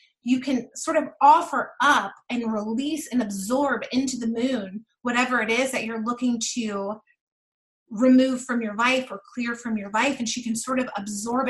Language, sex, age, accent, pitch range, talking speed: English, female, 30-49, American, 225-265 Hz, 185 wpm